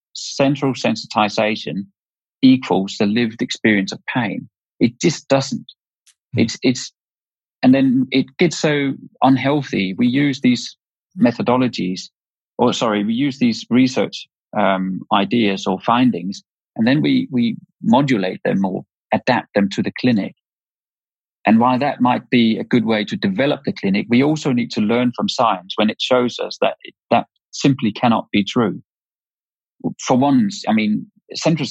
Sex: male